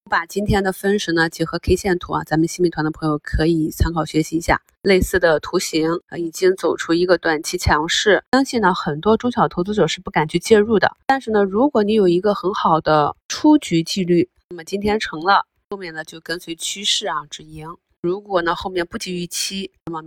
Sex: female